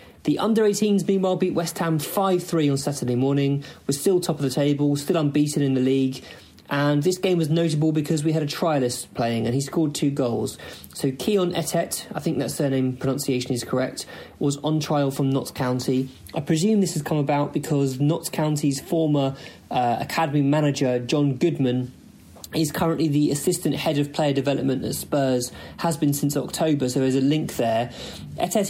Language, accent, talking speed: English, British, 185 wpm